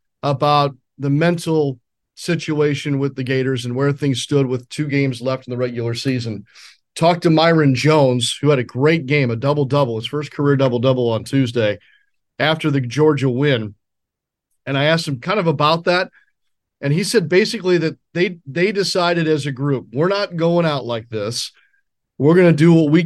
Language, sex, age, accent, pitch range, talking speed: English, male, 40-59, American, 130-155 Hz, 185 wpm